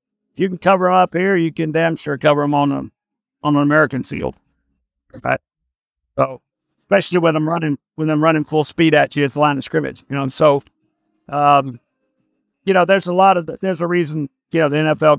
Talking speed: 220 wpm